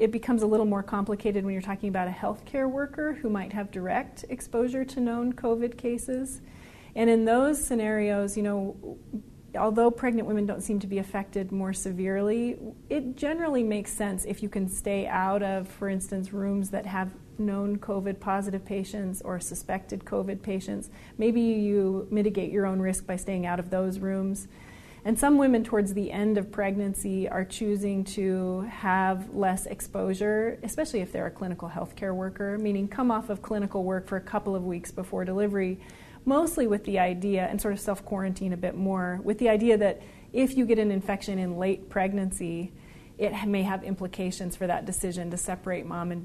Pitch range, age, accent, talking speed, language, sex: 190-215 Hz, 30-49, American, 185 wpm, English, female